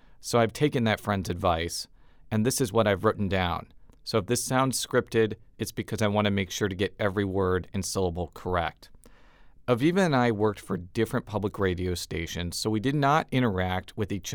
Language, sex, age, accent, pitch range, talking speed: English, male, 40-59, American, 95-120 Hz, 200 wpm